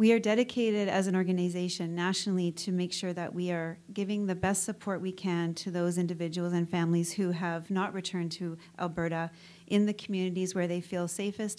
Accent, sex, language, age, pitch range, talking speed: American, female, English, 40-59, 170-185 Hz, 190 wpm